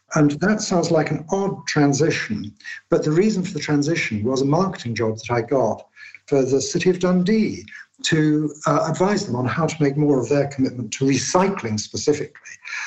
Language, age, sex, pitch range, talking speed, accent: English, 60-79, male, 120-155 Hz, 185 wpm, British